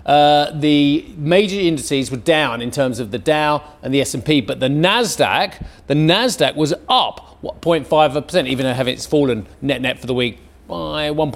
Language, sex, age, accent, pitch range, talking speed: English, male, 40-59, British, 130-185 Hz, 165 wpm